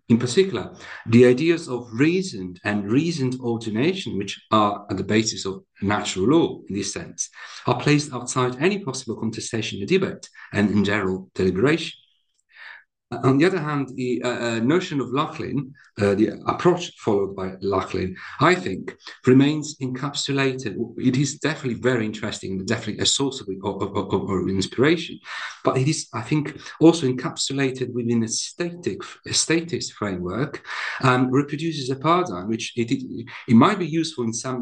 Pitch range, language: 110-140 Hz, English